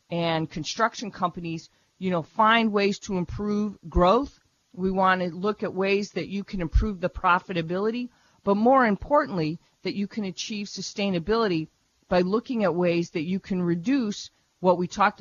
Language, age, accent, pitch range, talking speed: English, 40-59, American, 165-205 Hz, 160 wpm